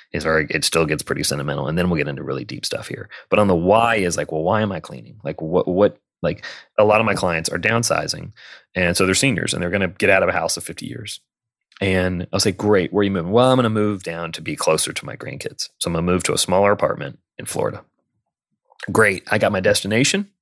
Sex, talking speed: male, 265 wpm